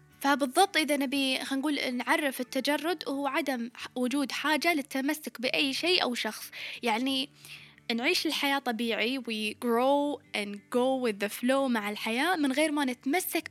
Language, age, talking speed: Arabic, 10-29, 140 wpm